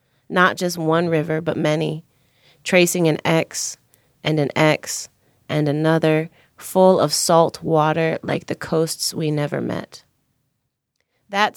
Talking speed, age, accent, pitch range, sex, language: 130 wpm, 30-49, American, 145-165 Hz, female, English